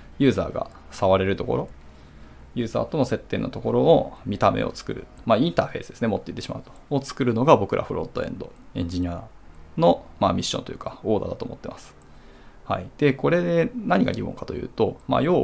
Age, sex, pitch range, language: 20-39, male, 85-125 Hz, Japanese